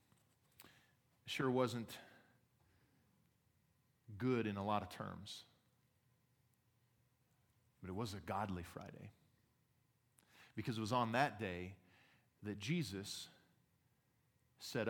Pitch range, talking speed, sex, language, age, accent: 110-135 Hz, 95 wpm, male, English, 40-59, American